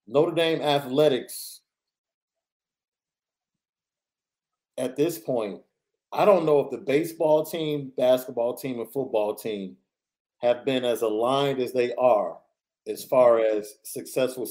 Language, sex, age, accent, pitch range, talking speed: English, male, 40-59, American, 115-150 Hz, 120 wpm